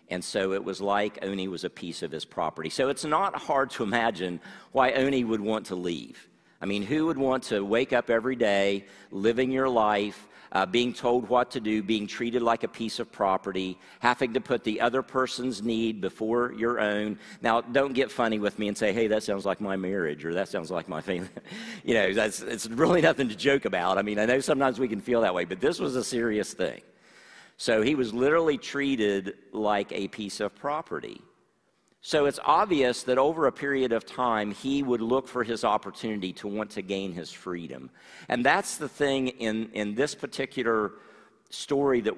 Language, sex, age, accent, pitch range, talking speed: English, male, 50-69, American, 100-125 Hz, 205 wpm